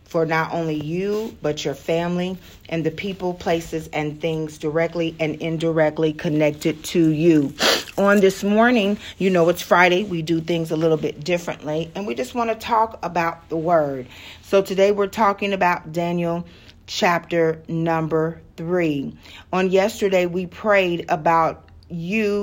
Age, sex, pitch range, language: 40-59, female, 165-205 Hz, English